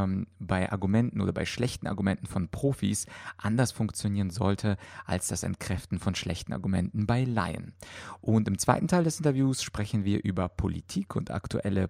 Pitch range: 95-115 Hz